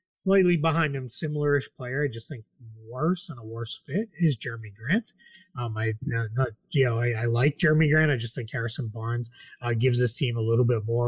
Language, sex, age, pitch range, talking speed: English, male, 30-49, 120-155 Hz, 215 wpm